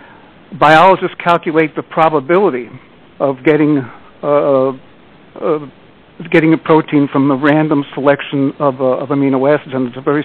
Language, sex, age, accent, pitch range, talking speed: English, male, 60-79, American, 140-165 Hz, 140 wpm